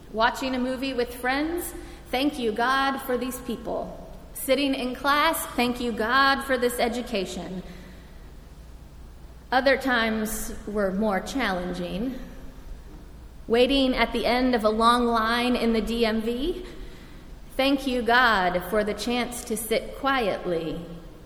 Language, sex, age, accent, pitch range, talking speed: English, female, 30-49, American, 210-265 Hz, 125 wpm